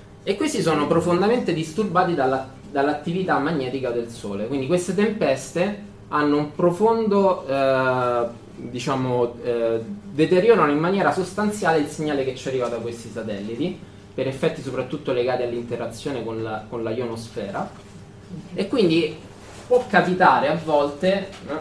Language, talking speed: Italian, 130 wpm